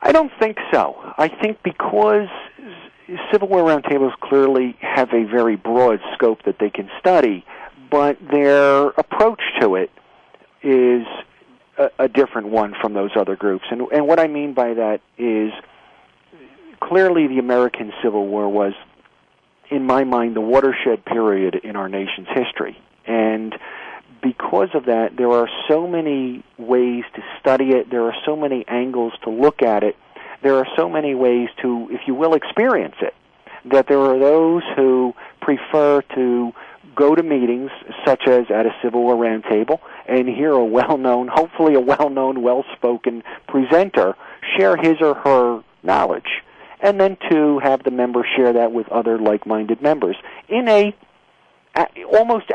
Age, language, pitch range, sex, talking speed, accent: 50-69, English, 120-155 Hz, male, 155 wpm, American